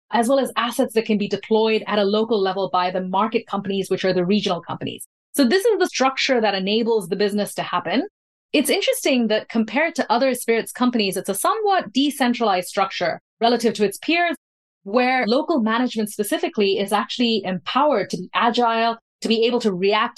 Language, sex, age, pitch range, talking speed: English, female, 30-49, 200-255 Hz, 190 wpm